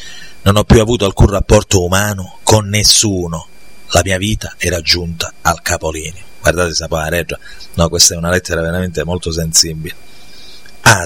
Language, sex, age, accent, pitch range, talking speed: Italian, male, 30-49, native, 90-110 Hz, 140 wpm